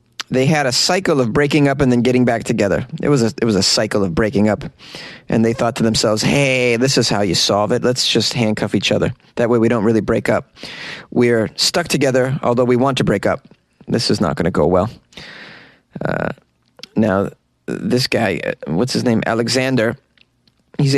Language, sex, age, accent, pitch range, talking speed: English, male, 30-49, American, 120-155 Hz, 195 wpm